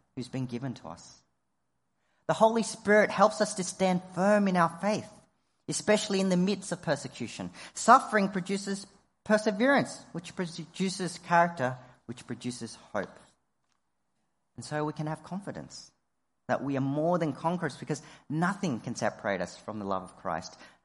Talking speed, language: 155 wpm, English